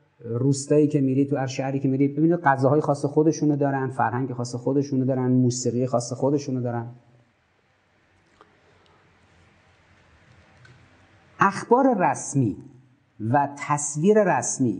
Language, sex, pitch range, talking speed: Persian, male, 115-155 Hz, 105 wpm